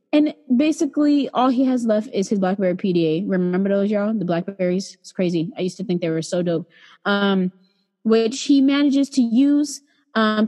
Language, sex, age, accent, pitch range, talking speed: English, female, 20-39, American, 190-245 Hz, 185 wpm